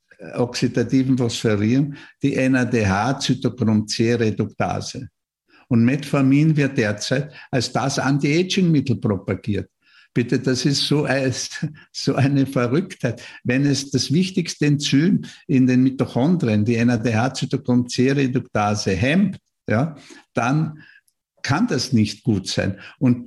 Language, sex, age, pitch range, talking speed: German, male, 50-69, 120-145 Hz, 100 wpm